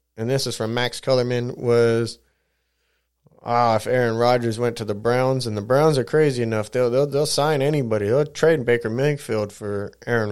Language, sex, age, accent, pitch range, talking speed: English, male, 20-39, American, 115-140 Hz, 190 wpm